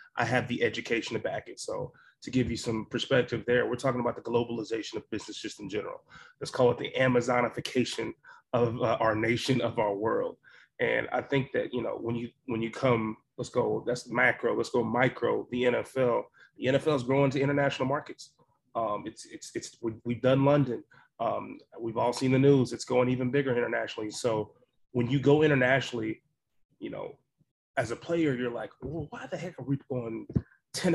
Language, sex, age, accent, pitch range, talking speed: English, male, 30-49, American, 120-145 Hz, 195 wpm